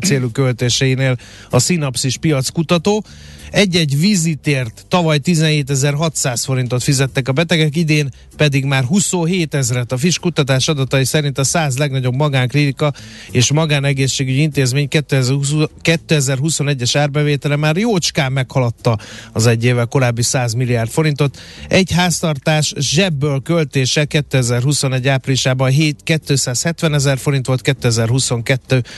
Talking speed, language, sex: 115 wpm, Hungarian, male